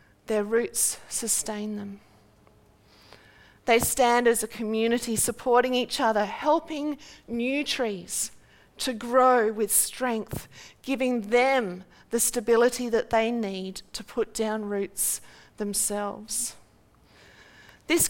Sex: female